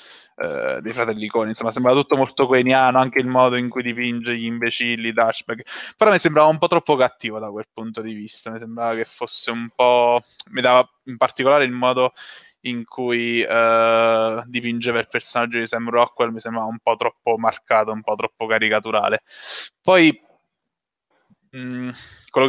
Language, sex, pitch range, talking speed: Italian, male, 115-125 Hz, 175 wpm